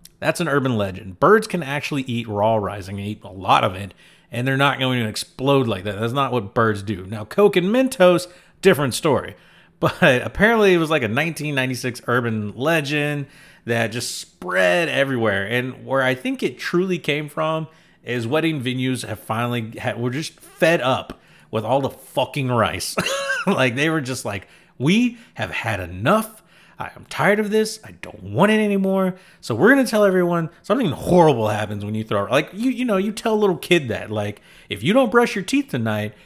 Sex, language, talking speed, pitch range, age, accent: male, English, 195 wpm, 110-180 Hz, 30-49, American